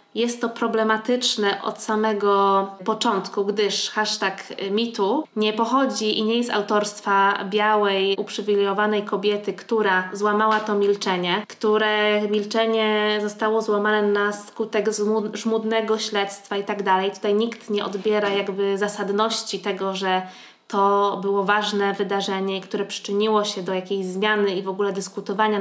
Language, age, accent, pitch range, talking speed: Polish, 20-39, native, 200-220 Hz, 130 wpm